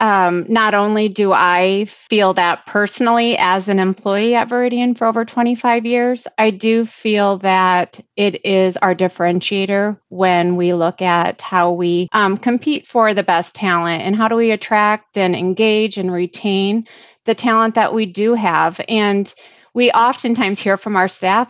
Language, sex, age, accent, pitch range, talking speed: English, female, 30-49, American, 195-235 Hz, 165 wpm